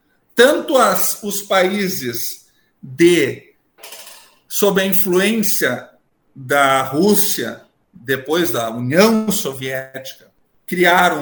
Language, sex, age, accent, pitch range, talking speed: Portuguese, male, 50-69, Brazilian, 175-255 Hz, 70 wpm